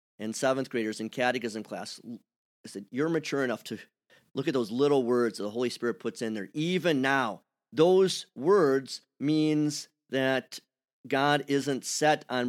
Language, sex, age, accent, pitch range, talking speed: English, male, 40-59, American, 115-150 Hz, 165 wpm